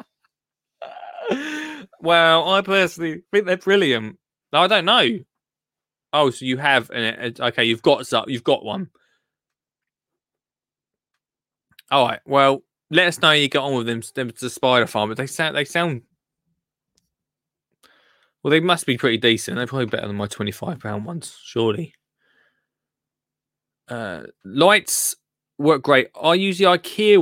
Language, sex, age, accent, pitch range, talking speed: English, male, 20-39, British, 115-155 Hz, 145 wpm